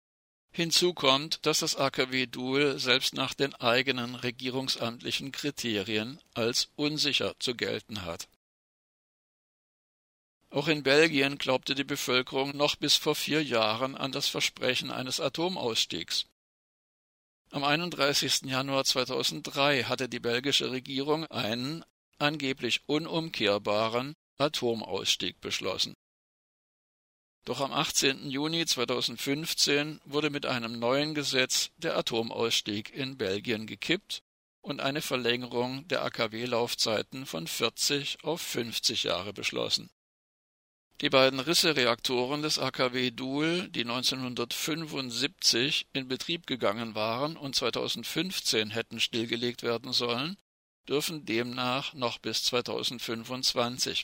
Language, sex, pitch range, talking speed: German, male, 120-145 Hz, 105 wpm